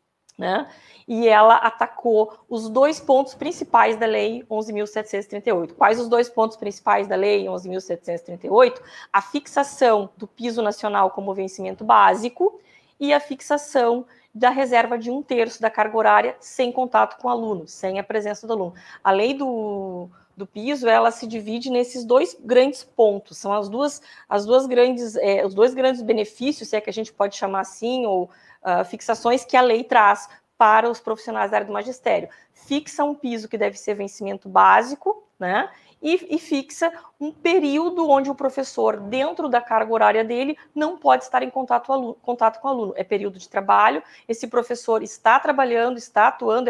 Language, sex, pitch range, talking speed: Portuguese, female, 205-265 Hz, 165 wpm